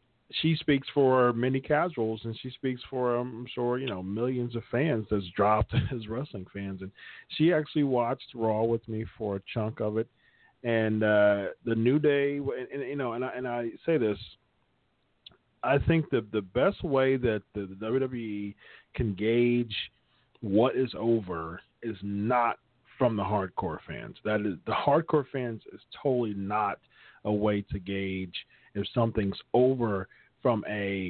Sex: male